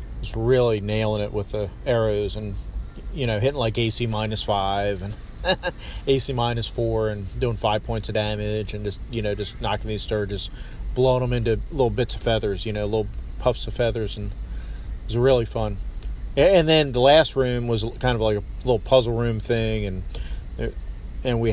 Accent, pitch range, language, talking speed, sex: American, 100-120 Hz, English, 185 wpm, male